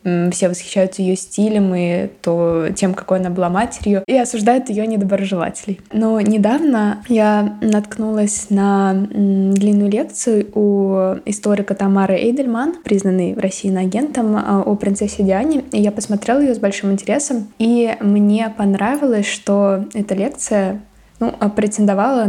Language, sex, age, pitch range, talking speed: Russian, female, 20-39, 185-210 Hz, 125 wpm